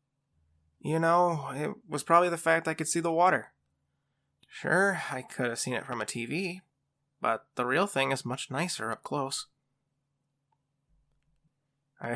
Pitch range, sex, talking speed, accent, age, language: 130-145 Hz, male, 155 wpm, American, 20-39, English